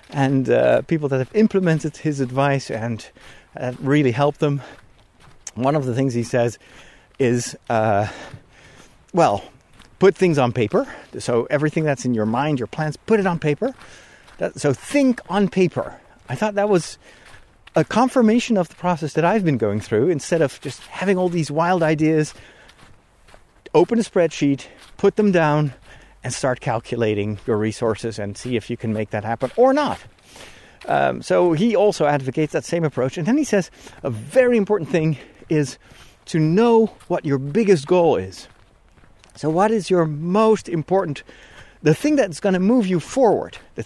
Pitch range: 125-190 Hz